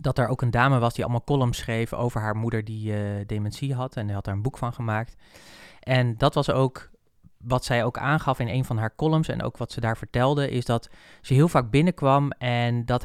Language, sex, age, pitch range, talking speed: Dutch, male, 20-39, 110-135 Hz, 240 wpm